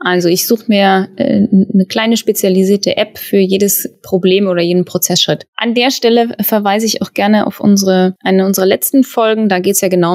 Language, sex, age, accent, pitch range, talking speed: German, female, 20-39, German, 190-240 Hz, 195 wpm